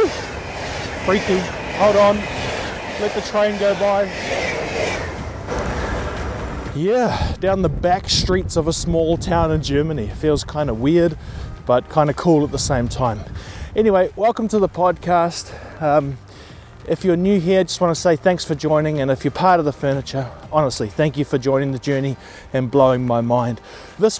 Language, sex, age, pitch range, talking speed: English, male, 20-39, 135-175 Hz, 165 wpm